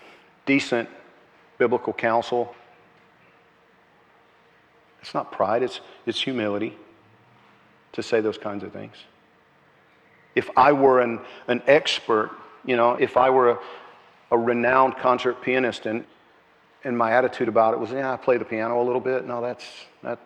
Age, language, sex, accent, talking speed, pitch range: 50-69, English, male, American, 145 wpm, 110-125 Hz